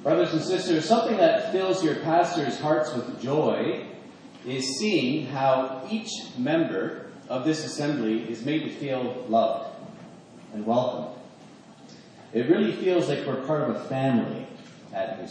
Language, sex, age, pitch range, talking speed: English, male, 40-59, 120-165 Hz, 145 wpm